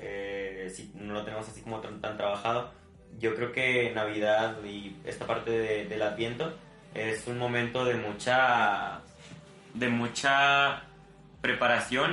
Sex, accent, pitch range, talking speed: male, Mexican, 100-115 Hz, 145 wpm